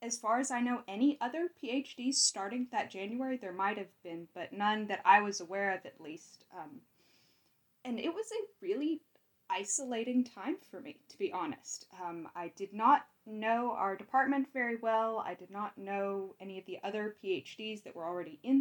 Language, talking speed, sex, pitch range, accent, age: English, 190 wpm, female, 195-255 Hz, American, 10-29